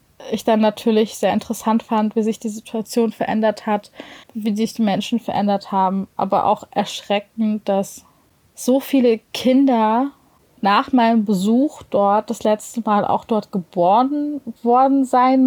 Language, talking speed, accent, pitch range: German, 145 wpm, German, 210-255 Hz